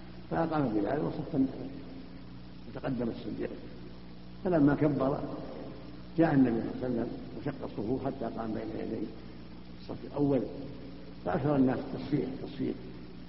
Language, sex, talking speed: Arabic, male, 115 wpm